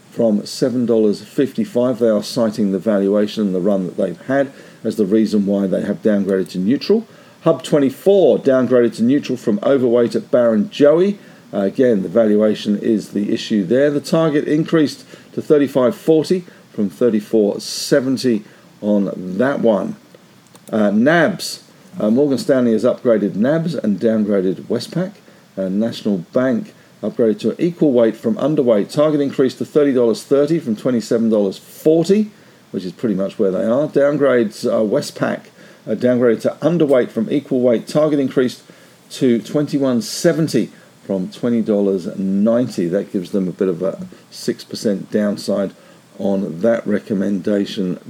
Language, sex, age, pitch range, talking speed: English, male, 50-69, 110-160 Hz, 145 wpm